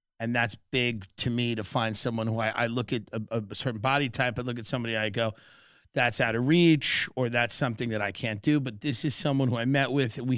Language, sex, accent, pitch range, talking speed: English, male, American, 115-135 Hz, 255 wpm